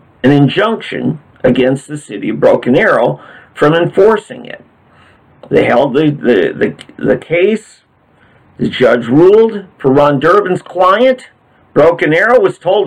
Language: English